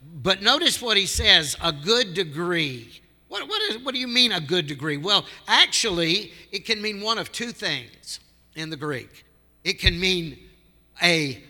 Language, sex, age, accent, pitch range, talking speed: English, male, 60-79, American, 125-175 Hz, 175 wpm